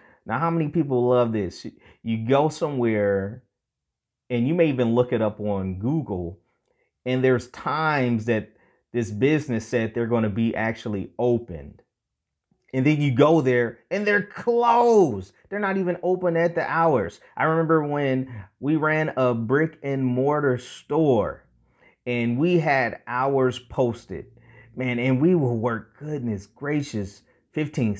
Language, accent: English, American